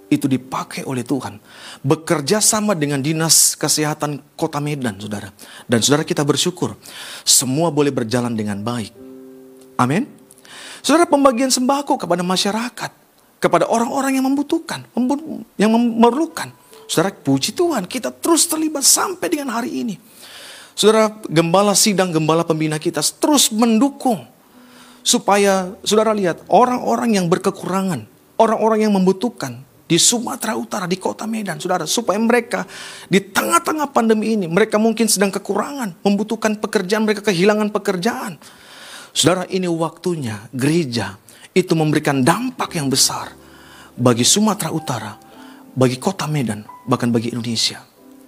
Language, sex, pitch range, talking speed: Indonesian, male, 145-235 Hz, 125 wpm